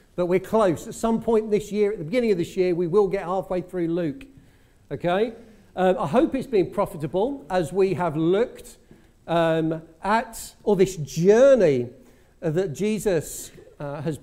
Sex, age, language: male, 50-69, English